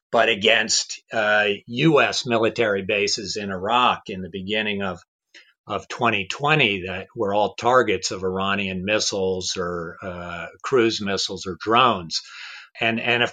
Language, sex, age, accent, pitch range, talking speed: English, male, 50-69, American, 95-115 Hz, 135 wpm